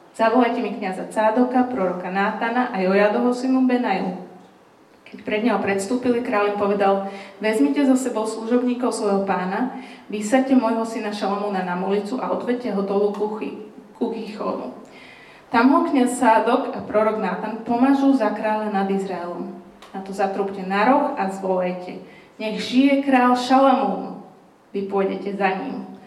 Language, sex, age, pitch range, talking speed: Slovak, female, 30-49, 190-240 Hz, 145 wpm